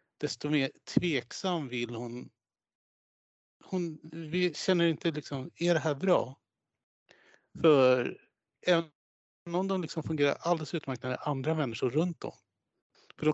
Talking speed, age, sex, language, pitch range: 135 wpm, 60-79, male, Swedish, 130-165 Hz